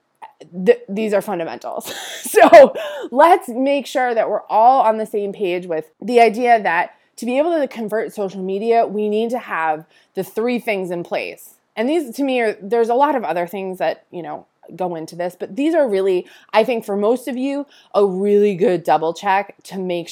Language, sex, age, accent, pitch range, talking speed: English, female, 20-39, American, 180-240 Hz, 205 wpm